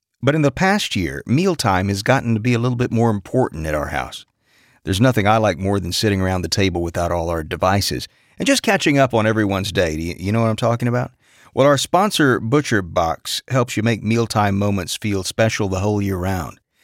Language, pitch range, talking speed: English, 100-135 Hz, 215 wpm